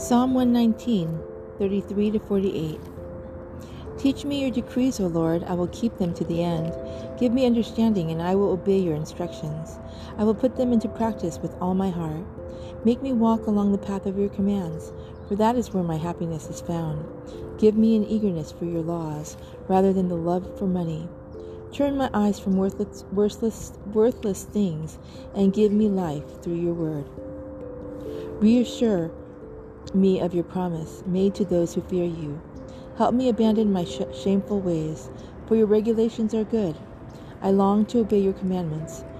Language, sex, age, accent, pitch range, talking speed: English, female, 40-59, American, 165-215 Hz, 165 wpm